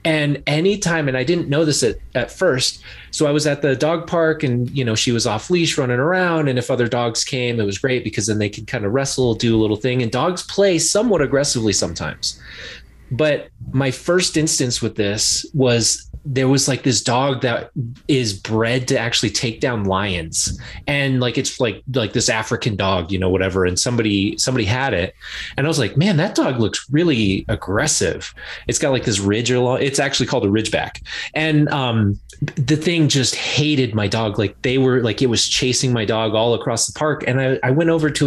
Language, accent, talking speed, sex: English, American, 210 wpm, male